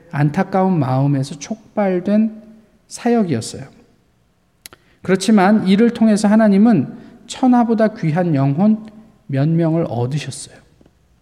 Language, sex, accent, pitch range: Korean, male, native, 140-205 Hz